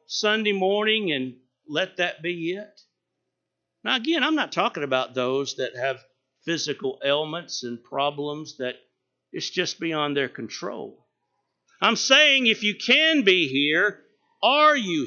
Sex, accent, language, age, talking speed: male, American, English, 60-79, 140 wpm